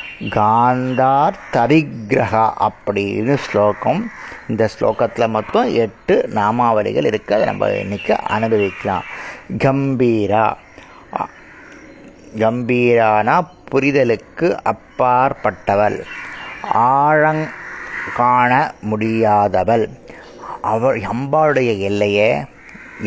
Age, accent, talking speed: 30-49, native, 60 wpm